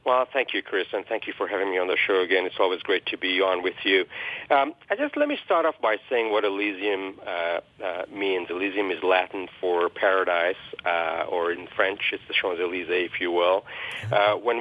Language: English